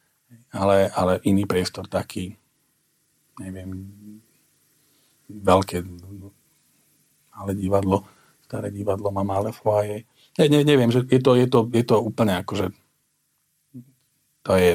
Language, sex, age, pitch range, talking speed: Slovak, male, 40-59, 100-125 Hz, 110 wpm